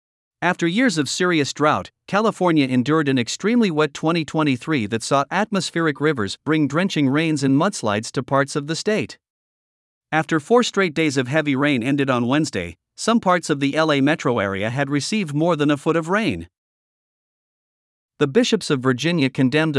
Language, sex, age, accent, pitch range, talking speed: English, male, 50-69, American, 130-170 Hz, 165 wpm